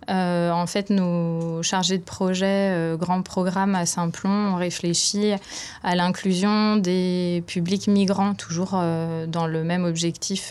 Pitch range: 175-205 Hz